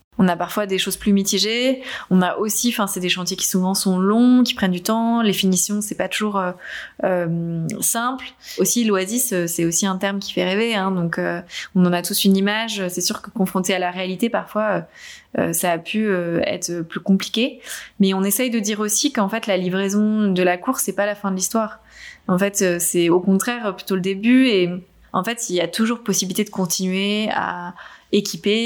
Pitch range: 180-210 Hz